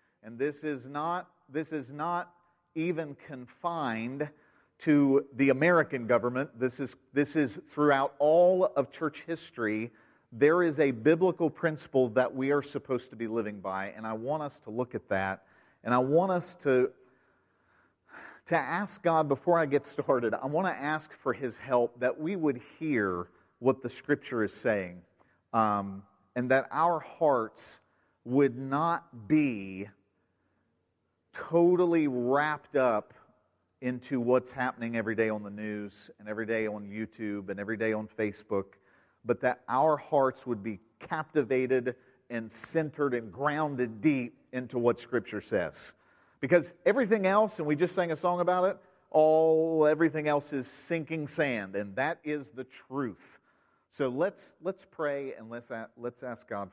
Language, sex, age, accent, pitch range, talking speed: English, male, 40-59, American, 115-155 Hz, 155 wpm